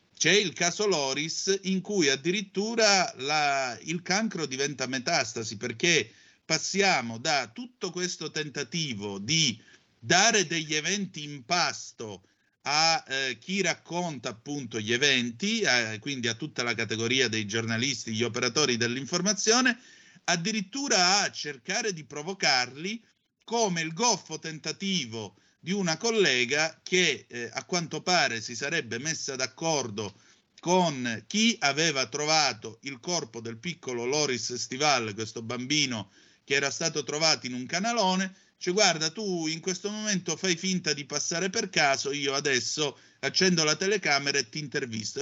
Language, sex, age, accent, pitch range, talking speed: Italian, male, 50-69, native, 125-180 Hz, 135 wpm